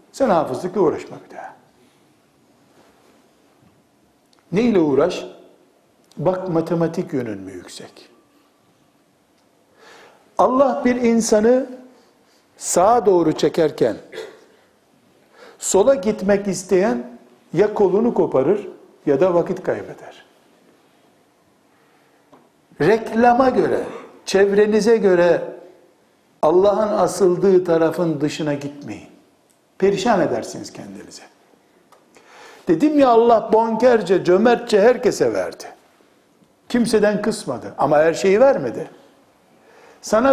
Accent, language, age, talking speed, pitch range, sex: native, Turkish, 60-79, 80 wpm, 175-235 Hz, male